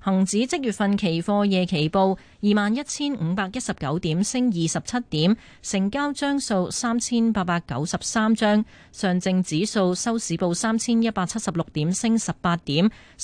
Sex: female